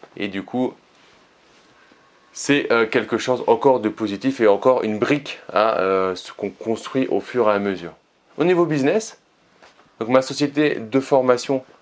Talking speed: 170 wpm